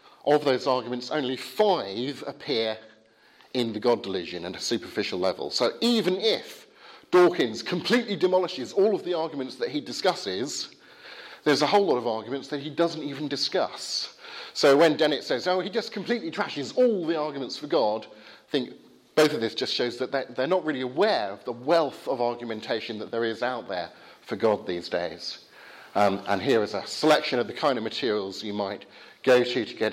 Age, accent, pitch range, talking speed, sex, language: 40-59, British, 110-150 Hz, 190 wpm, male, English